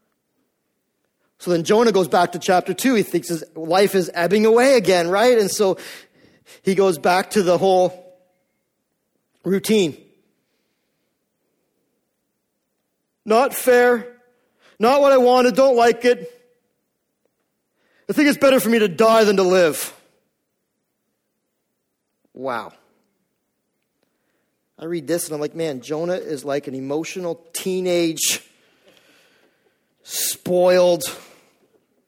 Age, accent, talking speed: 40-59, American, 115 wpm